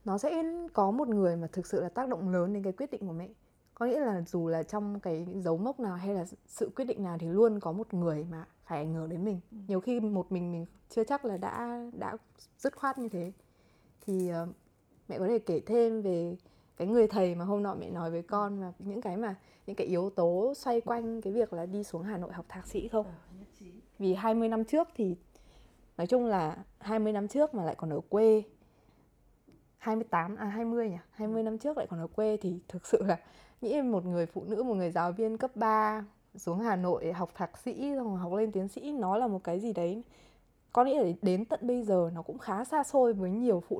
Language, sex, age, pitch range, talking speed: Vietnamese, female, 20-39, 175-225 Hz, 235 wpm